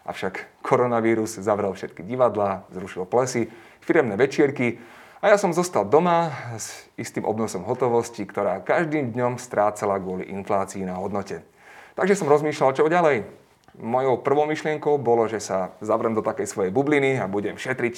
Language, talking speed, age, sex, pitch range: Slovak, 150 wpm, 30-49, male, 105-140 Hz